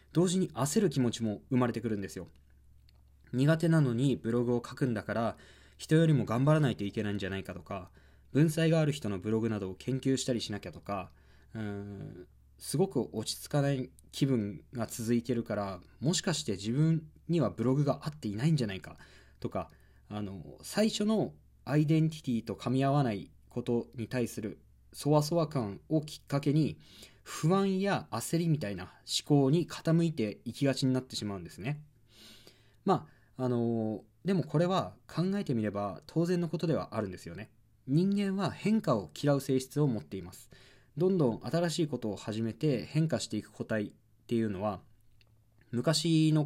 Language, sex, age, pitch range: Japanese, male, 20-39, 105-150 Hz